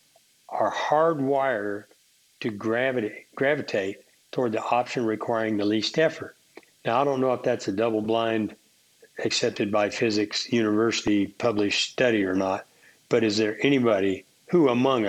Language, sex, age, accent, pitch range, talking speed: English, male, 60-79, American, 105-130 Hz, 135 wpm